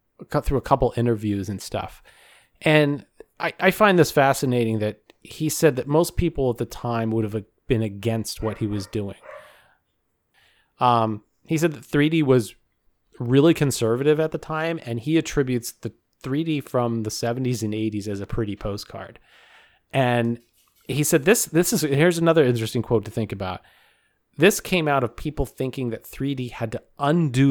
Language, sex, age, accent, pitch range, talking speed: English, male, 30-49, American, 110-145 Hz, 170 wpm